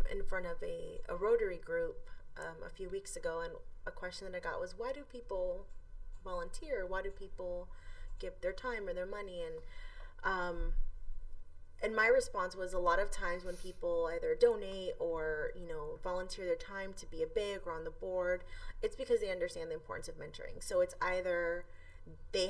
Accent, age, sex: American, 20-39, female